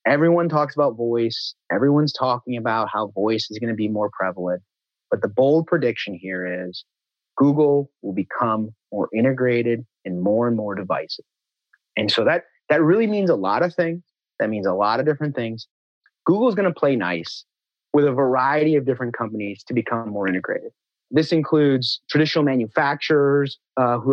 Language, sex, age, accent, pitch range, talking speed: English, male, 30-49, American, 115-150 Hz, 175 wpm